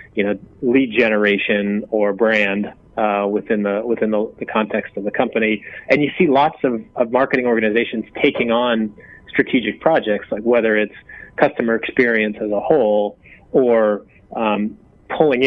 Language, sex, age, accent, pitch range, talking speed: English, male, 30-49, American, 105-115 Hz, 150 wpm